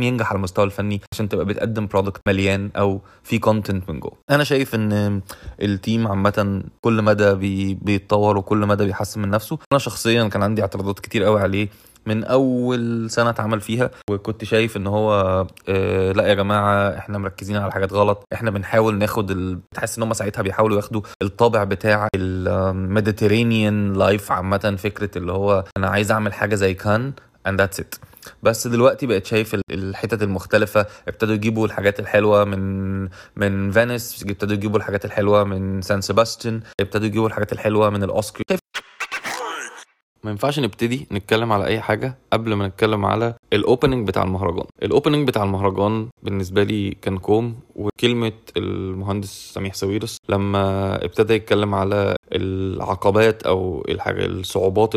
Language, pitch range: Arabic, 95-110 Hz